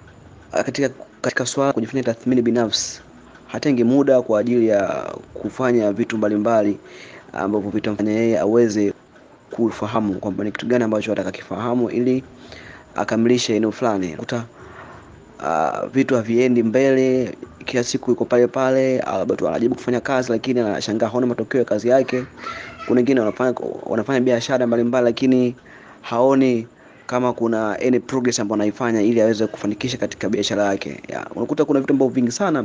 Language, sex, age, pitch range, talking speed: Swahili, male, 30-49, 110-125 Hz, 145 wpm